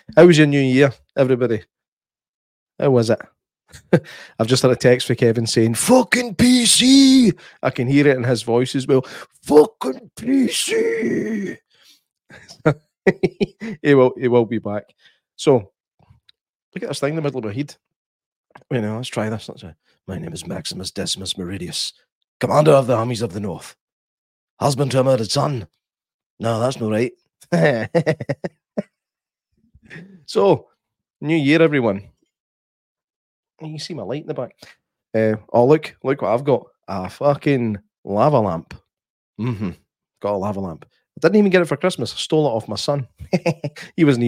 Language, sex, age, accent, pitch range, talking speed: English, male, 30-49, British, 105-155 Hz, 160 wpm